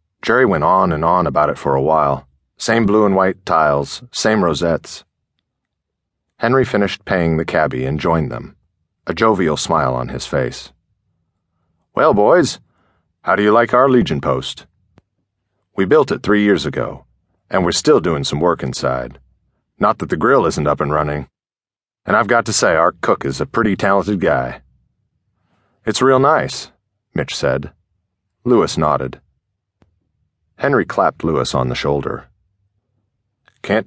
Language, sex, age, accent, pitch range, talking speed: English, male, 40-59, American, 70-100 Hz, 155 wpm